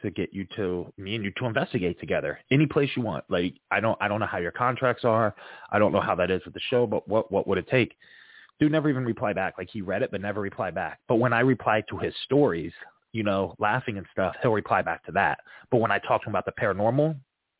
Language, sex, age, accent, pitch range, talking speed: English, male, 30-49, American, 100-125 Hz, 265 wpm